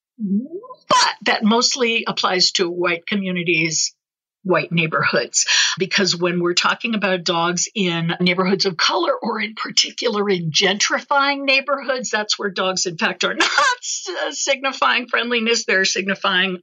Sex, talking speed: female, 130 wpm